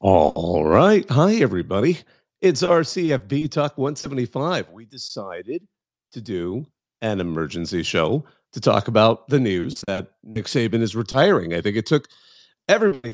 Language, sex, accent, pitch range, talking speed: English, male, American, 100-135 Hz, 135 wpm